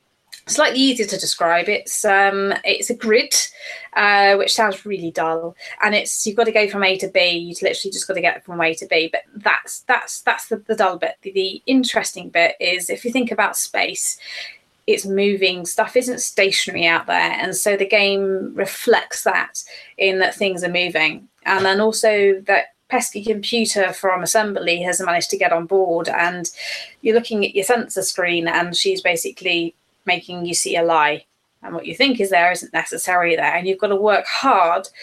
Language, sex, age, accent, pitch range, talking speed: English, female, 20-39, British, 180-220 Hz, 195 wpm